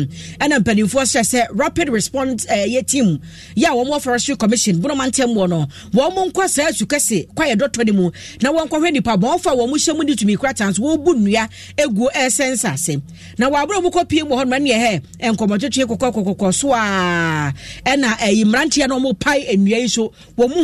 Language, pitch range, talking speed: English, 190-275 Hz, 175 wpm